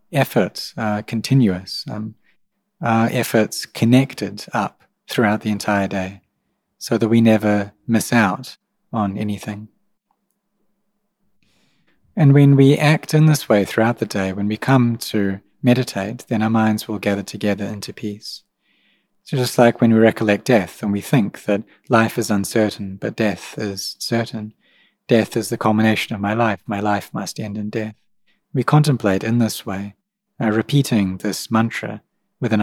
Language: English